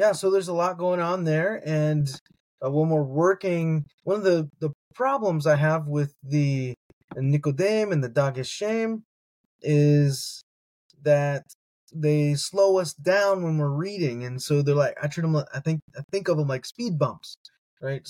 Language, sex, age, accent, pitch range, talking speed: English, male, 20-39, American, 130-170 Hz, 180 wpm